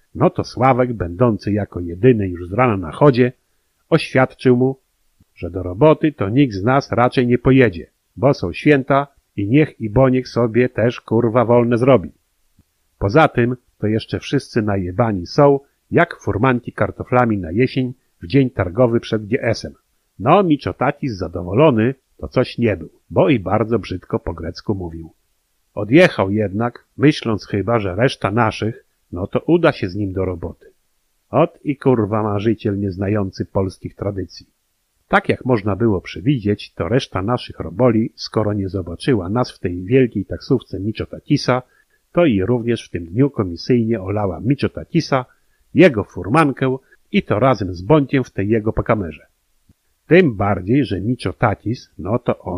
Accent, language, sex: native, Polish, male